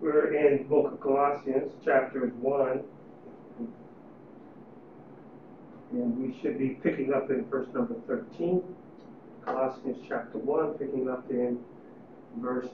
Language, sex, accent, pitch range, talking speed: English, male, American, 130-200 Hz, 120 wpm